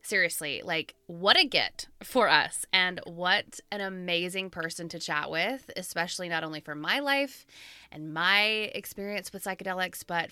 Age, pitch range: 20-39, 170-215 Hz